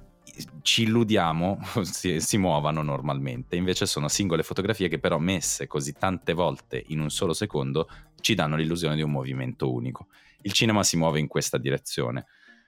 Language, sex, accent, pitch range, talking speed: Italian, male, native, 75-95 Hz, 160 wpm